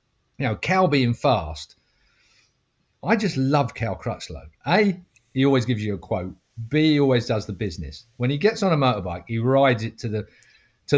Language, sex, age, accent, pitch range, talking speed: English, male, 40-59, British, 105-135 Hz, 190 wpm